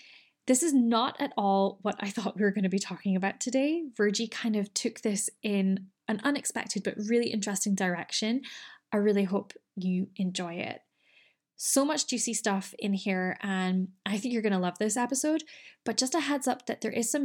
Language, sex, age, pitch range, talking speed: English, female, 10-29, 195-245 Hz, 200 wpm